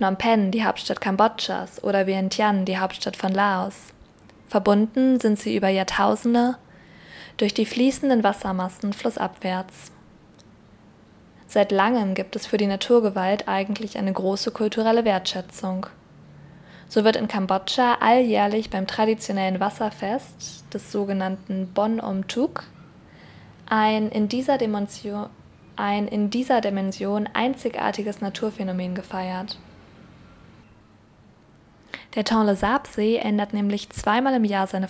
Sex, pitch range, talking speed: female, 190-220 Hz, 115 wpm